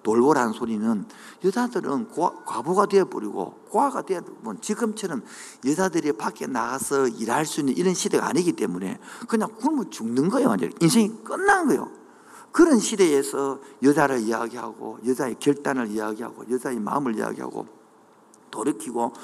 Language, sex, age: Korean, male, 50-69